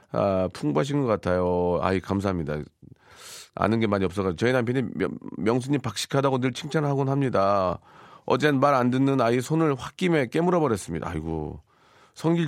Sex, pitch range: male, 95-130 Hz